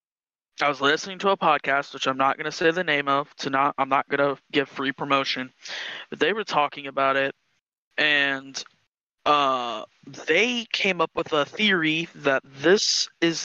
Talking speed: 185 wpm